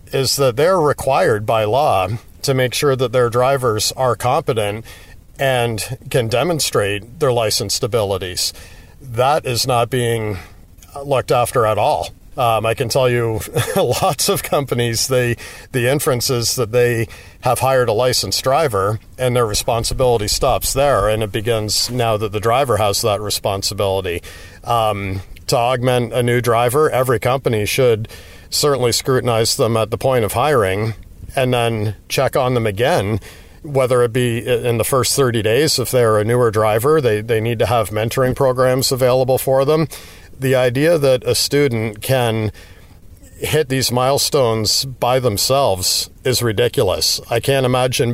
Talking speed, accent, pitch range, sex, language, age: 155 wpm, American, 105-130 Hz, male, English, 50-69